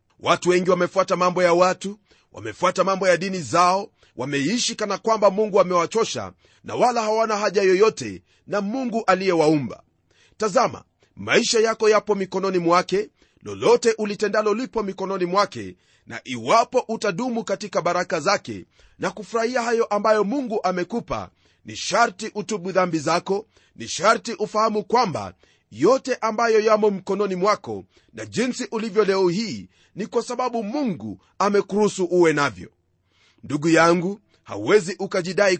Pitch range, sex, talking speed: 180-220 Hz, male, 130 wpm